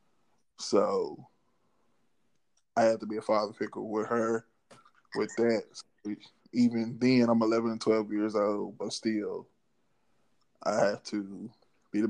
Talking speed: 135 wpm